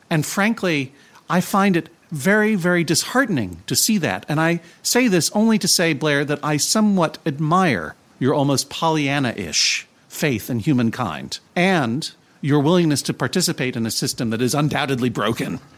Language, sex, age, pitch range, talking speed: English, male, 40-59, 115-160 Hz, 155 wpm